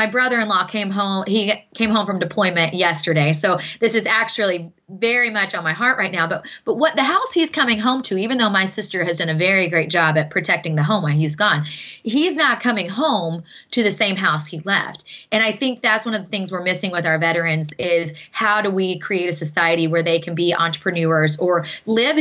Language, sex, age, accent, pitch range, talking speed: English, female, 20-39, American, 170-220 Hz, 225 wpm